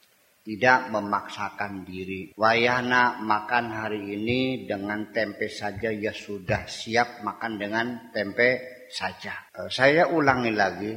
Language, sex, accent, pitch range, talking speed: Indonesian, male, native, 105-145 Hz, 110 wpm